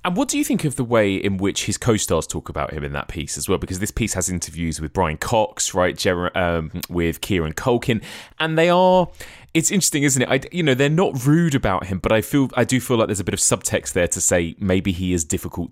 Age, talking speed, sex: 20-39, 255 wpm, male